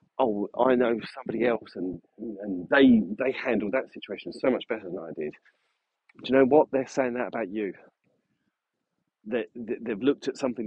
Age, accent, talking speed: 40-59, British, 185 wpm